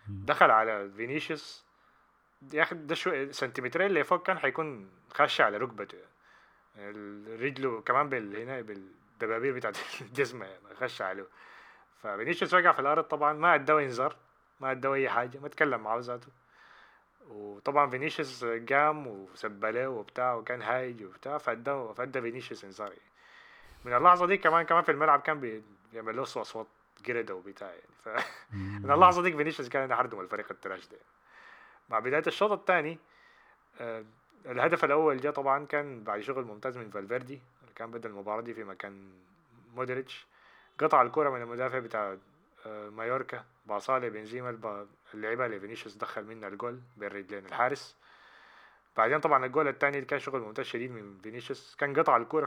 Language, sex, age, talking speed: Arabic, male, 20-39, 140 wpm